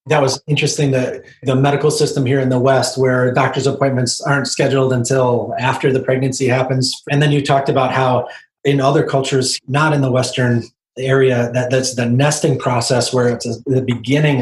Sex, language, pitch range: male, English, 130-150 Hz